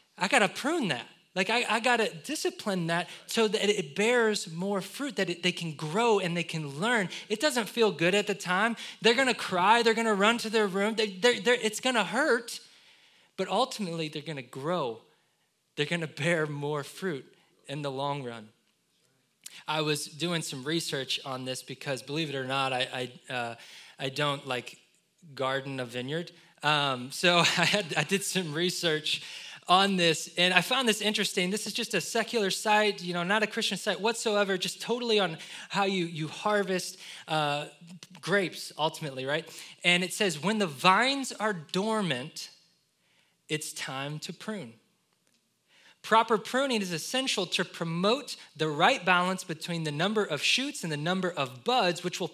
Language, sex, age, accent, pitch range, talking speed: English, male, 20-39, American, 155-215 Hz, 175 wpm